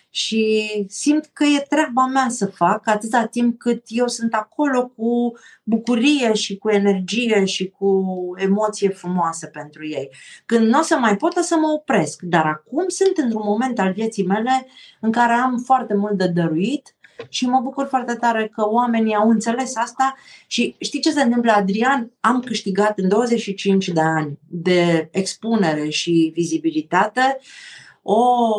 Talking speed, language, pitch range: 160 wpm, Romanian, 175-240 Hz